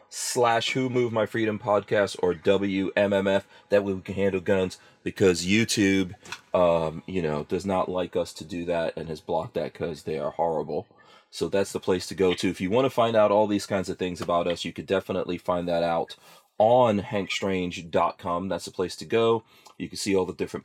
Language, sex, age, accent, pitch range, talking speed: English, male, 30-49, American, 90-110 Hz, 210 wpm